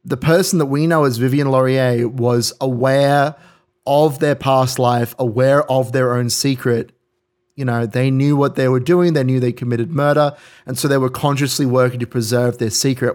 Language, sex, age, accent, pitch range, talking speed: English, male, 30-49, Australian, 120-140 Hz, 190 wpm